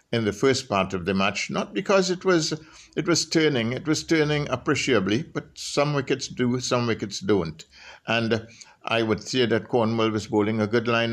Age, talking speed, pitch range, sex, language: 60-79, 195 wpm, 100-140 Hz, male, English